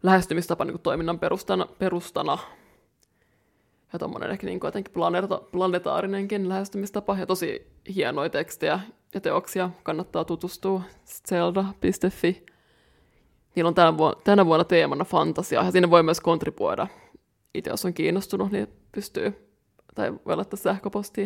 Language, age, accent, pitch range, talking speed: Finnish, 20-39, native, 170-195 Hz, 120 wpm